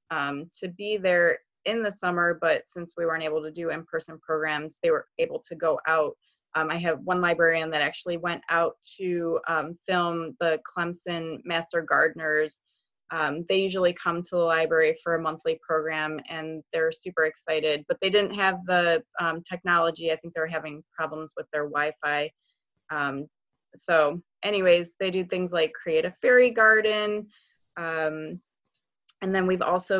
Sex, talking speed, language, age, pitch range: female, 170 wpm, English, 20-39, 160-185 Hz